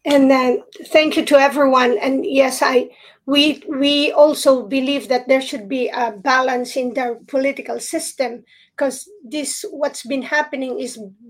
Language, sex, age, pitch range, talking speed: English, female, 40-59, 250-280 Hz, 155 wpm